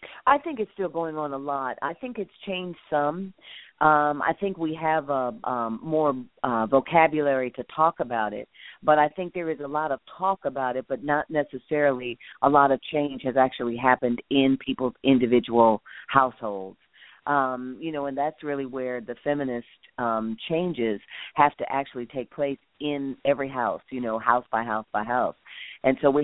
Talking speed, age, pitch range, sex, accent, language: 185 wpm, 40-59, 120-145 Hz, female, American, English